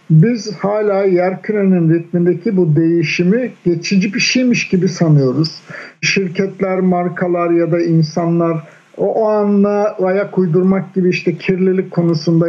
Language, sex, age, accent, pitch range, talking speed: Turkish, male, 50-69, native, 160-195 Hz, 120 wpm